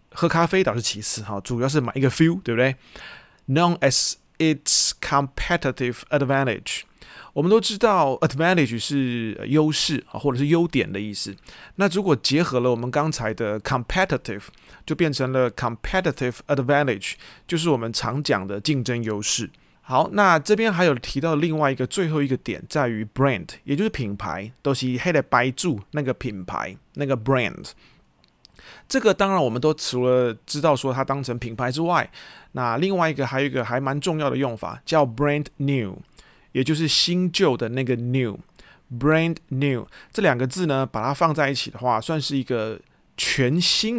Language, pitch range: Chinese, 125-160 Hz